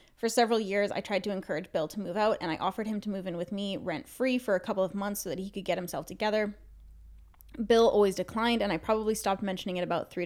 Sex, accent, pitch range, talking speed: female, American, 185-220 Hz, 255 wpm